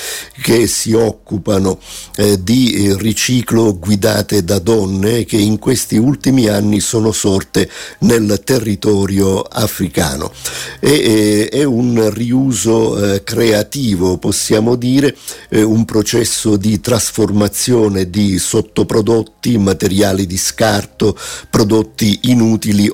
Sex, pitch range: male, 95-110 Hz